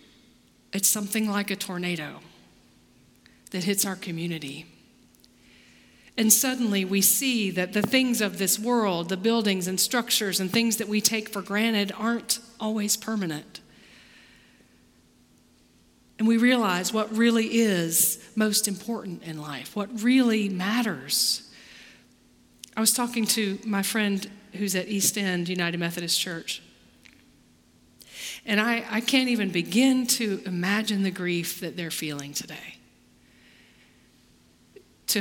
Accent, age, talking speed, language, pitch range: American, 40-59, 125 wpm, English, 190-235 Hz